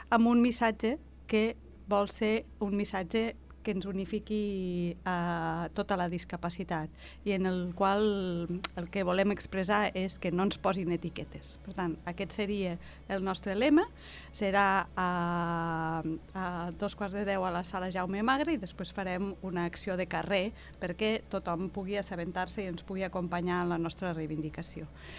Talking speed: 155 wpm